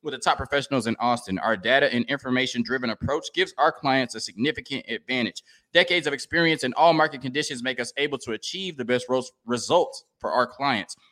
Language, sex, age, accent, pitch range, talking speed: English, male, 20-39, American, 115-145 Hz, 195 wpm